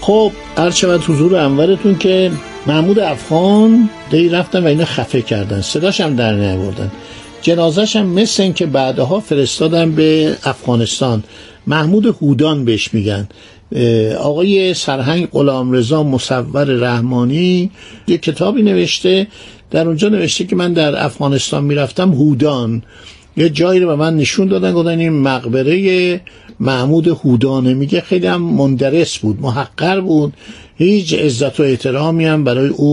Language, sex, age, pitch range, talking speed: Persian, male, 60-79, 125-175 Hz, 135 wpm